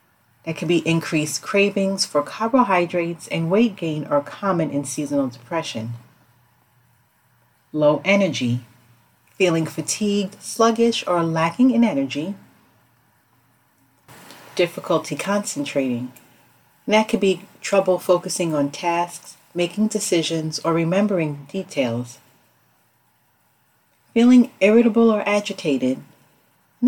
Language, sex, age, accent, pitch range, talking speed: English, female, 40-59, American, 145-200 Hz, 100 wpm